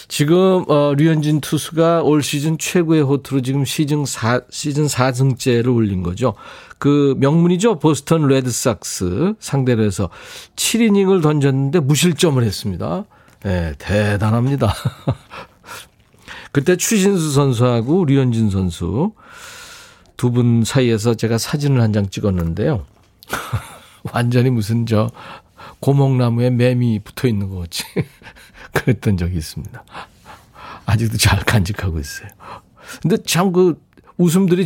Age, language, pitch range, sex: 40-59, Korean, 105-160 Hz, male